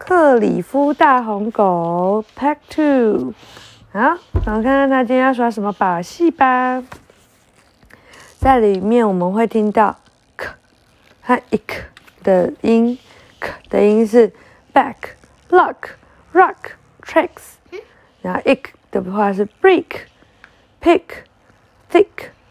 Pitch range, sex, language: 215-325 Hz, female, Chinese